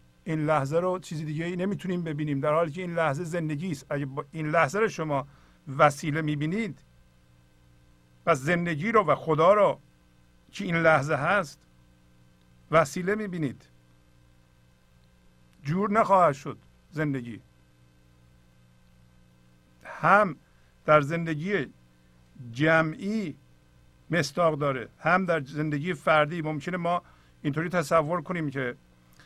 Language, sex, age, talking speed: Persian, male, 50-69, 110 wpm